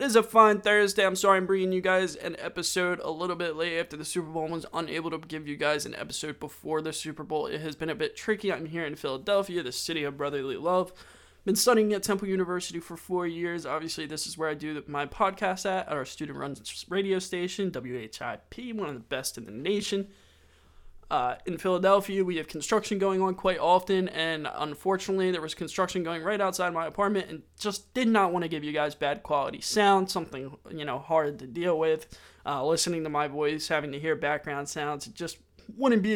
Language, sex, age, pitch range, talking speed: English, male, 20-39, 150-190 Hz, 220 wpm